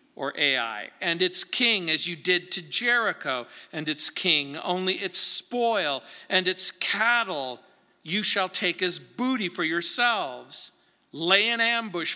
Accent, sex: American, male